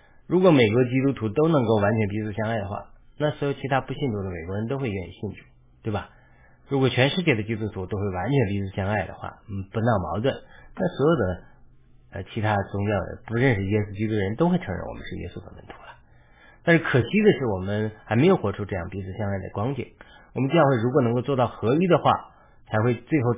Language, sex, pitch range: Chinese, male, 105-135 Hz